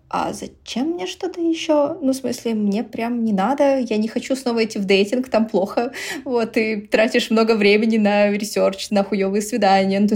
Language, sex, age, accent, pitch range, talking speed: Russian, female, 20-39, native, 180-220 Hz, 195 wpm